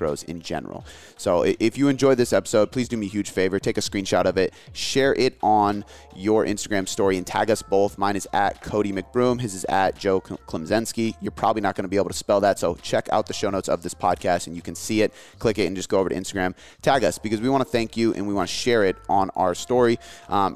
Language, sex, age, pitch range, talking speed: English, male, 30-49, 95-120 Hz, 260 wpm